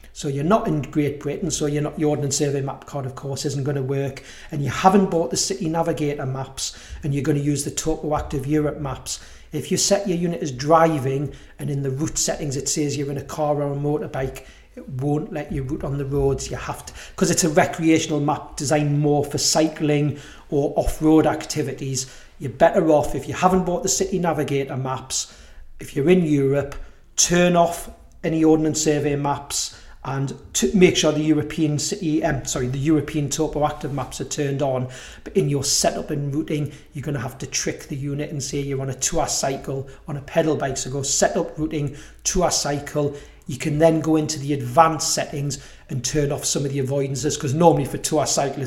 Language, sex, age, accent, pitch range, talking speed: English, male, 40-59, British, 140-155 Hz, 210 wpm